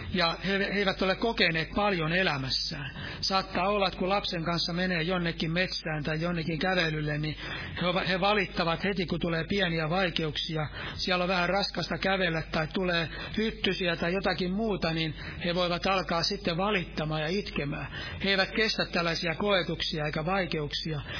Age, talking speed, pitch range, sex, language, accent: 60-79, 155 wpm, 160-195 Hz, male, Finnish, native